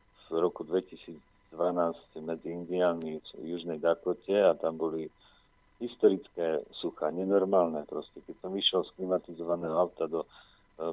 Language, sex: Slovak, male